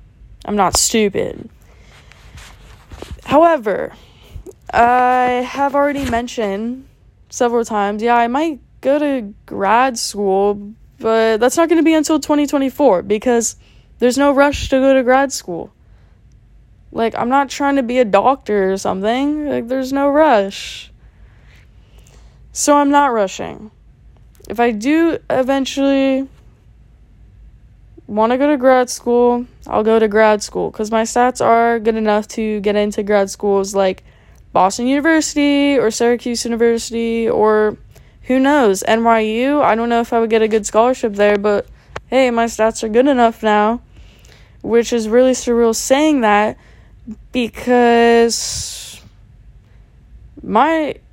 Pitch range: 210-260 Hz